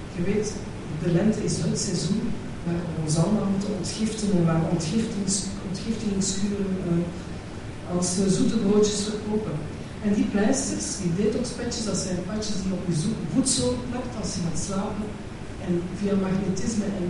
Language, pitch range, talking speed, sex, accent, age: Dutch, 165-195 Hz, 155 wpm, female, Dutch, 40-59